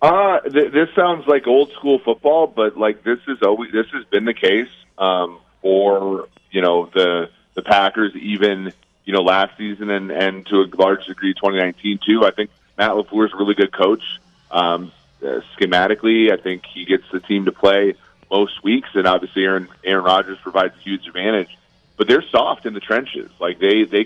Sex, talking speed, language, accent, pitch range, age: male, 195 wpm, English, American, 95-110 Hz, 30-49